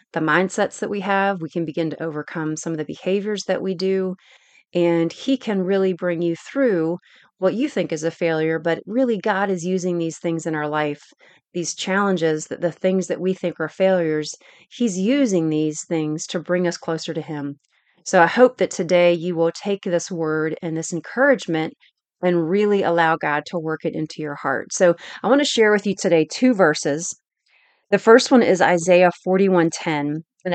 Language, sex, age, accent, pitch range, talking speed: English, female, 30-49, American, 160-200 Hz, 195 wpm